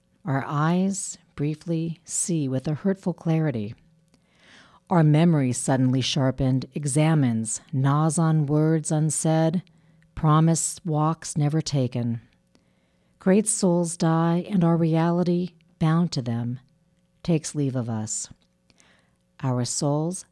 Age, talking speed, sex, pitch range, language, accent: 50-69, 105 wpm, female, 125-165 Hz, English, American